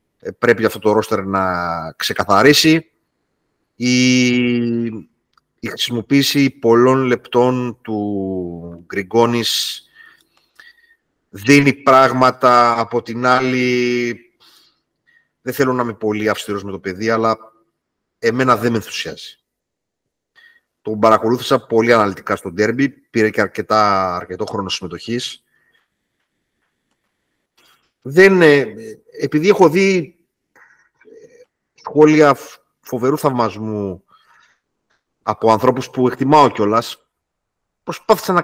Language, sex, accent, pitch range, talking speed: Greek, male, native, 110-160 Hz, 90 wpm